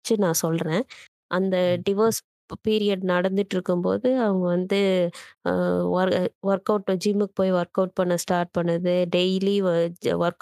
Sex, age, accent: female, 20-39, native